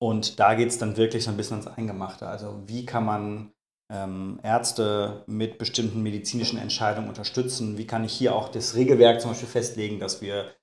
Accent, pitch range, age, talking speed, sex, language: German, 105-120 Hz, 30-49, 190 wpm, male, German